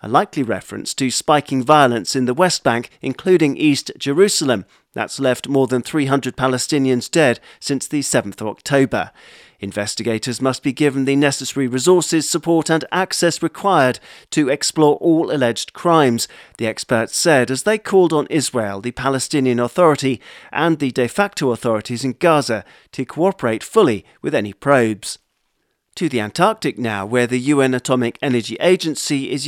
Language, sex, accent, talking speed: English, male, British, 155 wpm